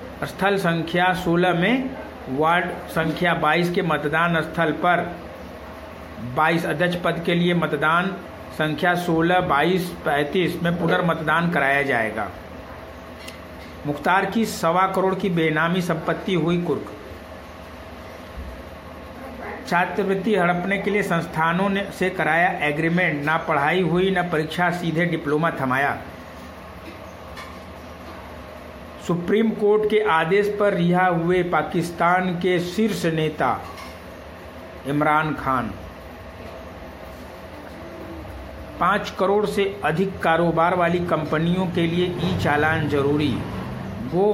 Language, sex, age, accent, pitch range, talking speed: Hindi, male, 60-79, native, 135-180 Hz, 105 wpm